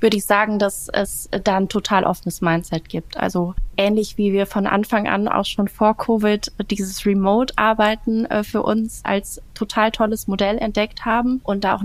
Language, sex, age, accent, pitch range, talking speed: German, female, 20-39, German, 190-210 Hz, 175 wpm